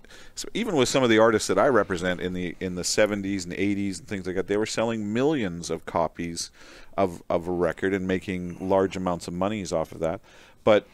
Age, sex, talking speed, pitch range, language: 40-59, male, 225 wpm, 90-105 Hz, English